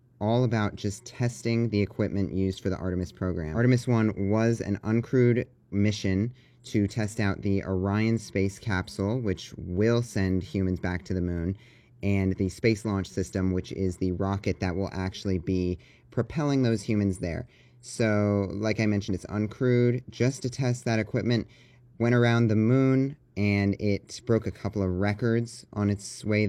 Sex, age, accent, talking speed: male, 30-49, American, 170 wpm